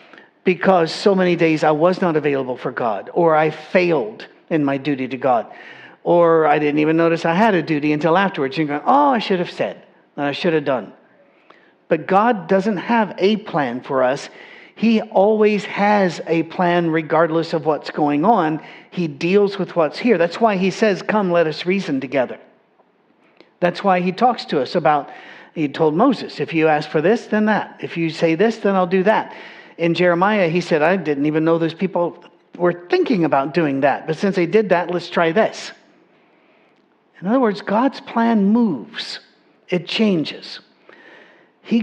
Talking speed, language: 185 wpm, English